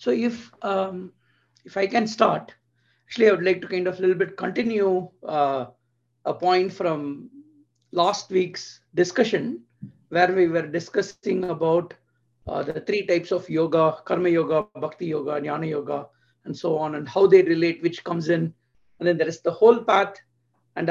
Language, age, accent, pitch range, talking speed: English, 50-69, Indian, 160-200 Hz, 170 wpm